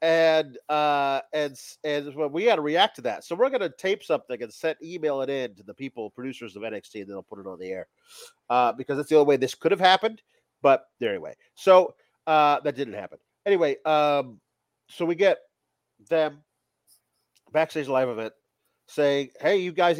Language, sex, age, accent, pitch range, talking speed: English, male, 40-59, American, 135-180 Hz, 190 wpm